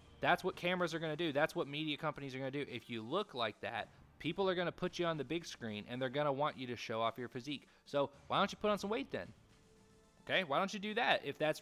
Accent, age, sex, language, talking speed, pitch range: American, 20-39, male, English, 300 wpm, 115-150 Hz